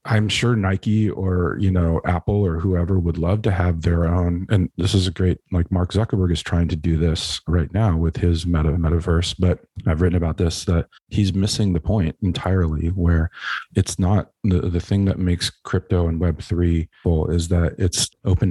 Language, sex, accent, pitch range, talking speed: English, male, American, 80-95 Hz, 200 wpm